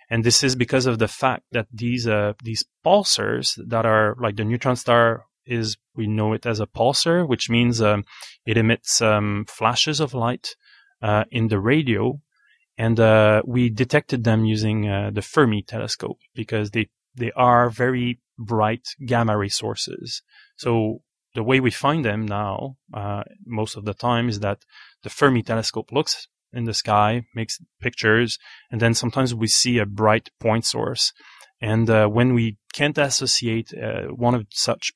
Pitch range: 110-125 Hz